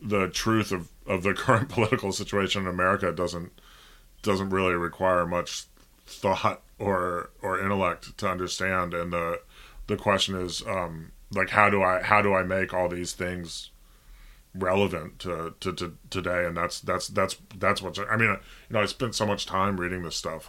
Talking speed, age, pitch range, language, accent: 180 wpm, 10-29, 85-100 Hz, Swedish, American